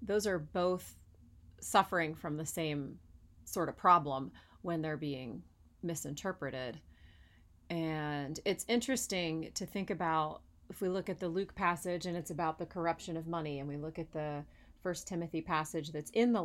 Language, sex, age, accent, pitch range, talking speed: English, female, 30-49, American, 150-180 Hz, 165 wpm